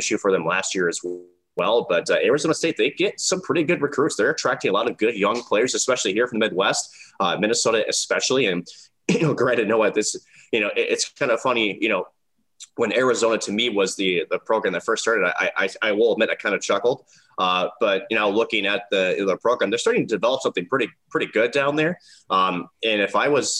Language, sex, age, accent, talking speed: English, male, 20-39, American, 235 wpm